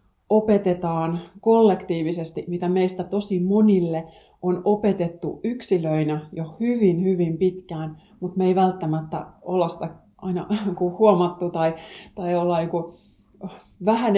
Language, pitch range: Finnish, 160-190 Hz